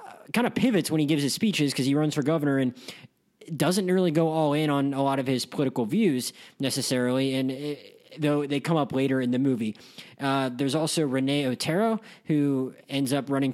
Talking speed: 205 wpm